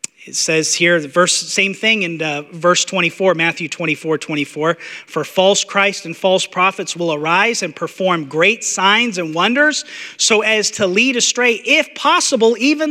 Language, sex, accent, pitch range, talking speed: English, male, American, 150-205 Hz, 165 wpm